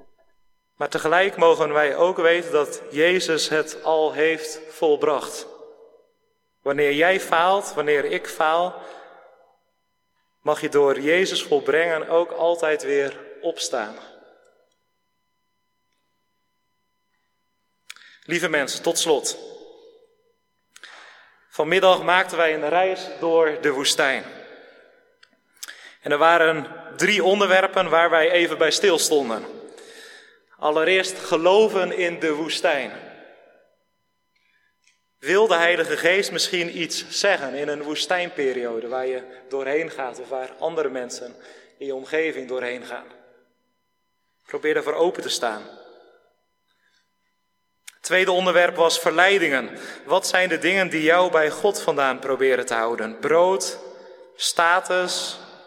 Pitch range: 155-200 Hz